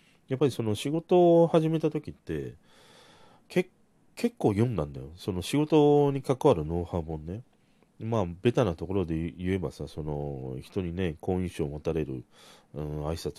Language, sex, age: Japanese, male, 40-59